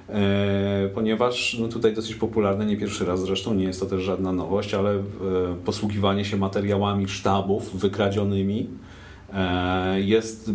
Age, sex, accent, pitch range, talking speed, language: 40-59, male, native, 95-115 Hz, 120 wpm, Polish